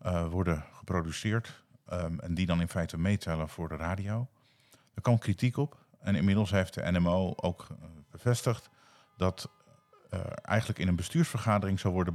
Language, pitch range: Dutch, 90-115 Hz